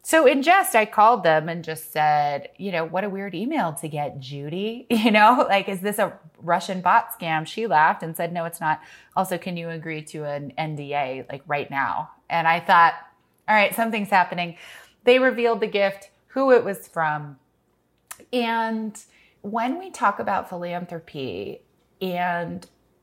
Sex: female